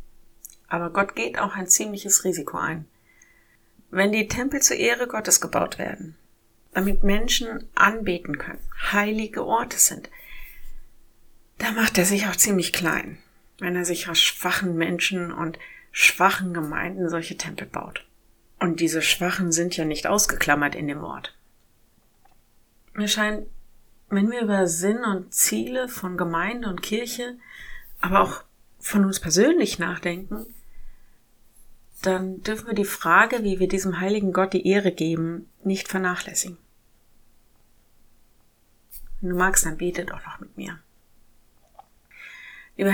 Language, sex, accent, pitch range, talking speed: German, female, German, 160-200 Hz, 135 wpm